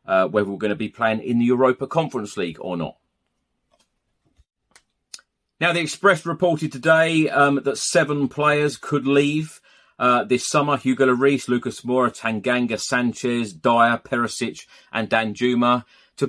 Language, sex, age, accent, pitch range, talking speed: English, male, 30-49, British, 100-125 Hz, 145 wpm